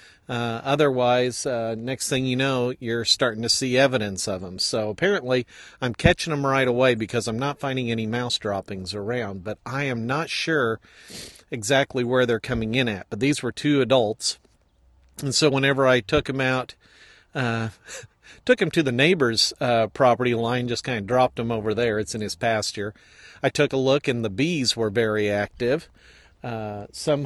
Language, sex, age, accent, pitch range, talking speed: English, male, 50-69, American, 110-135 Hz, 185 wpm